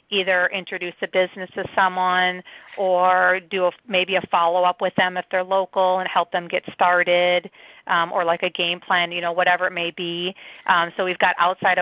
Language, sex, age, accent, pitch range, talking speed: English, female, 40-59, American, 175-190 Hz, 195 wpm